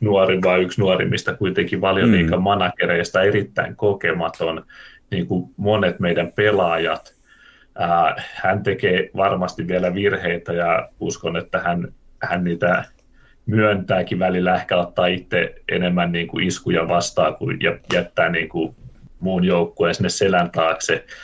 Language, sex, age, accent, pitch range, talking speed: Finnish, male, 30-49, native, 85-120 Hz, 130 wpm